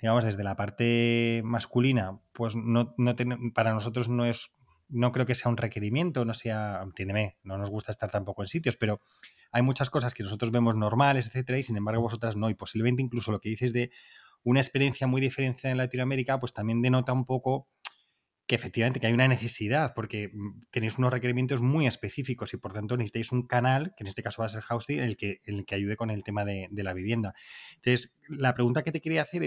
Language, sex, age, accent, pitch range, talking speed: Spanish, male, 20-39, Spanish, 110-125 Hz, 215 wpm